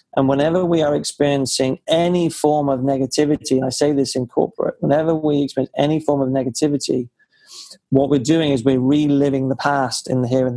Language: English